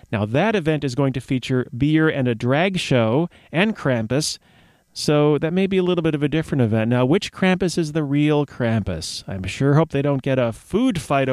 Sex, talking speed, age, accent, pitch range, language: male, 215 wpm, 30-49, American, 125-160 Hz, English